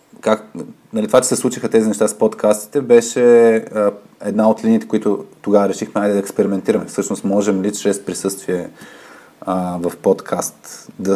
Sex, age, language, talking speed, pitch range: male, 20-39, Bulgarian, 155 wpm, 95-110 Hz